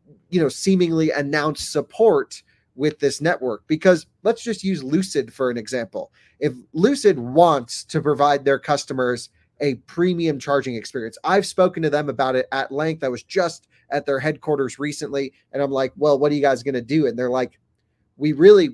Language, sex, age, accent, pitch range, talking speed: English, male, 30-49, American, 130-165 Hz, 185 wpm